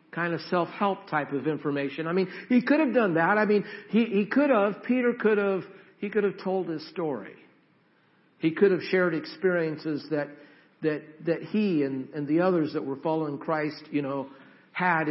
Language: English